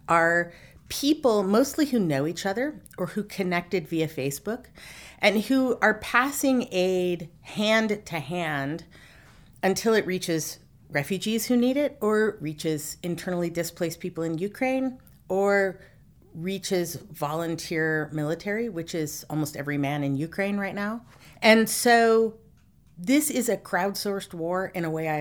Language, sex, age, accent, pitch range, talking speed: English, female, 40-59, American, 165-215 Hz, 135 wpm